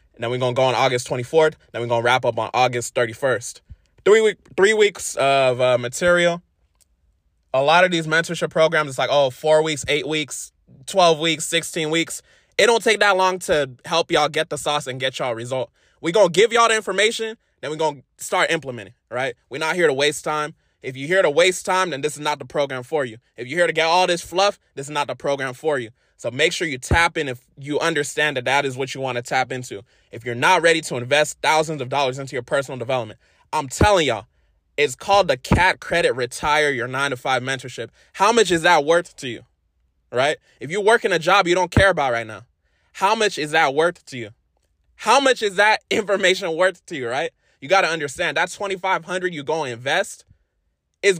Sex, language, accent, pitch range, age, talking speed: male, English, American, 130-180 Hz, 20-39, 230 wpm